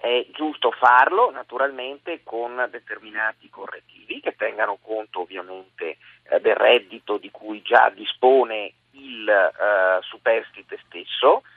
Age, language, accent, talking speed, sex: 40-59, Italian, native, 110 wpm, male